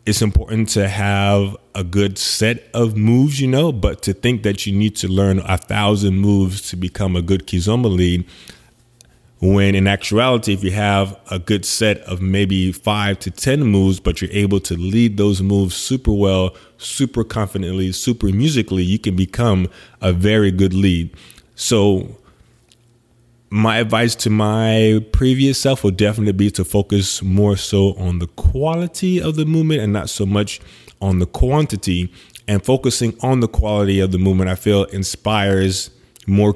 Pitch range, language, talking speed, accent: 95-115 Hz, English, 165 wpm, American